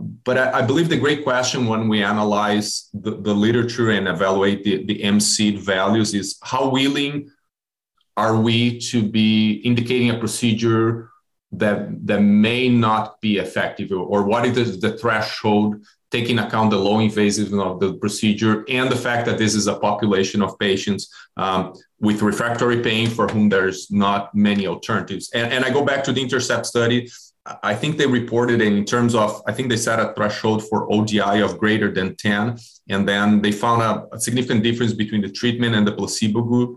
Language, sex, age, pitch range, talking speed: English, male, 30-49, 105-130 Hz, 180 wpm